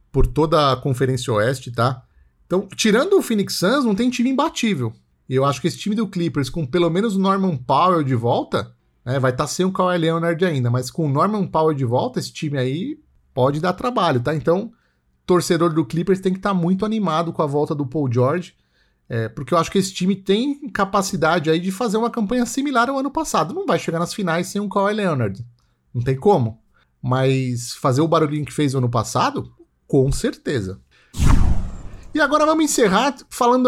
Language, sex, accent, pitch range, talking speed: Portuguese, male, Brazilian, 145-235 Hz, 200 wpm